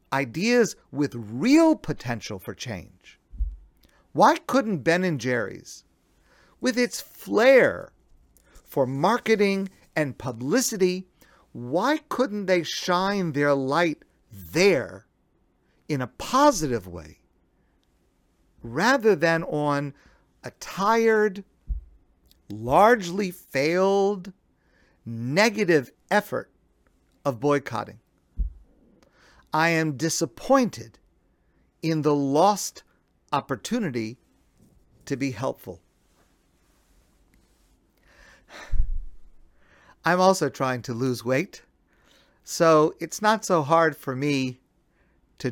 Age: 50-69